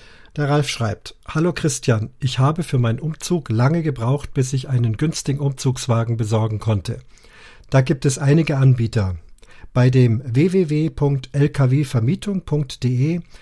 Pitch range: 125-150 Hz